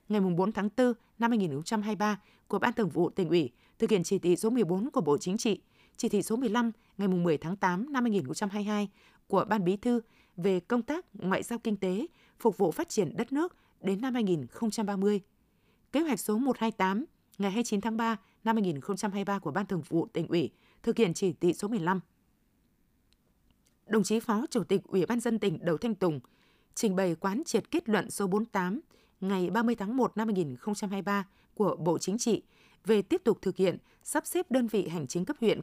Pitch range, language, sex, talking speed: 185-230 Hz, Vietnamese, female, 195 wpm